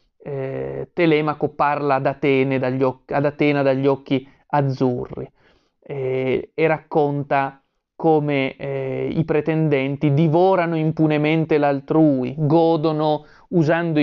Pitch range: 135-160 Hz